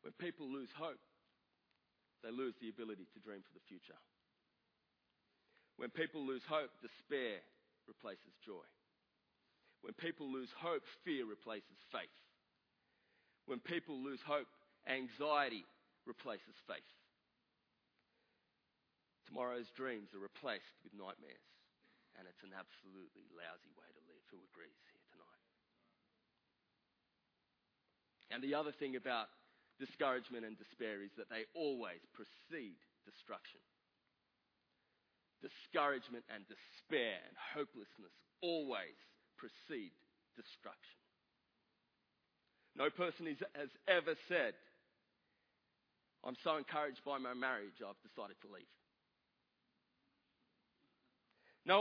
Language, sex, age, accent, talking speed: English, male, 30-49, Australian, 105 wpm